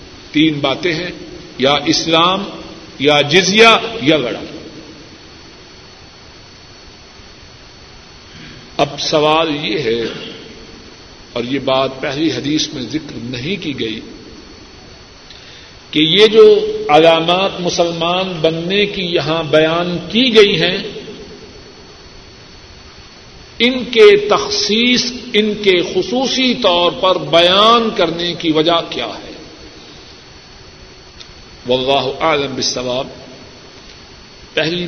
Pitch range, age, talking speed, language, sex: 135-180 Hz, 50-69, 95 wpm, Urdu, male